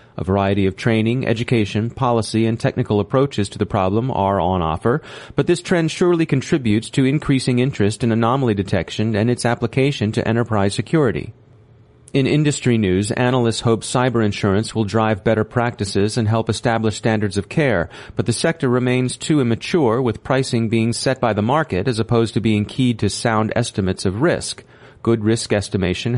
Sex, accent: male, American